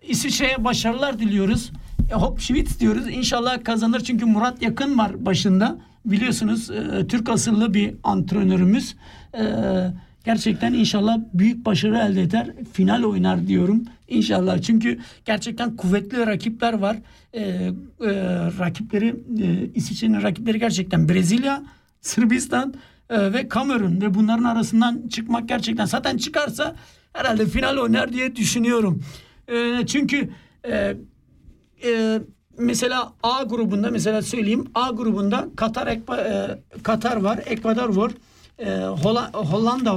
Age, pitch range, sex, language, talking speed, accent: 60-79, 205-240 Hz, male, German, 110 wpm, Turkish